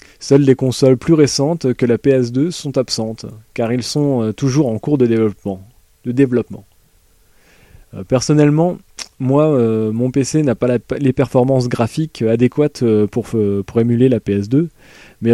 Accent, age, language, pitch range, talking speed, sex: French, 20-39, French, 110-140 Hz, 135 wpm, male